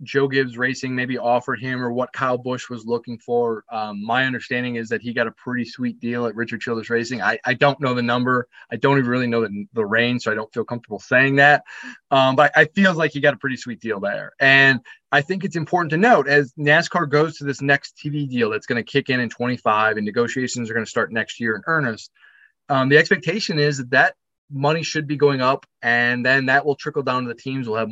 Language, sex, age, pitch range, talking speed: English, male, 20-39, 120-145 Hz, 245 wpm